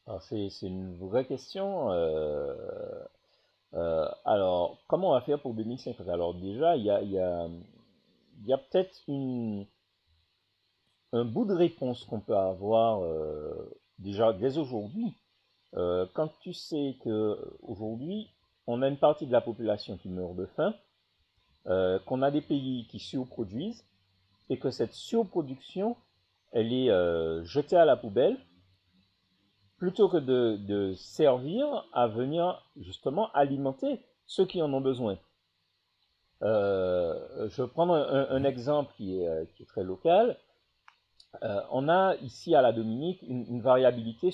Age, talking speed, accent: 50-69, 145 wpm, French